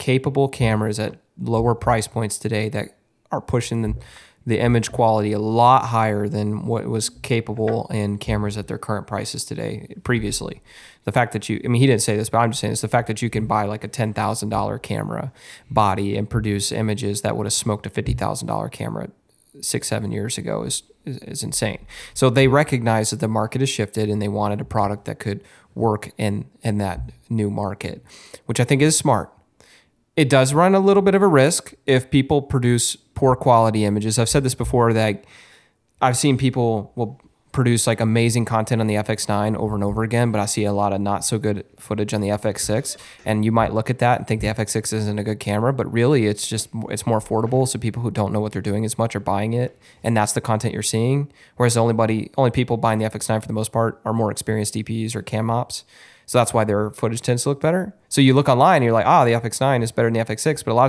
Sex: male